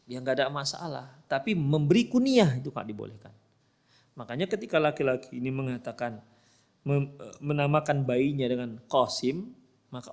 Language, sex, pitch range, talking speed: Indonesian, male, 120-160 Hz, 120 wpm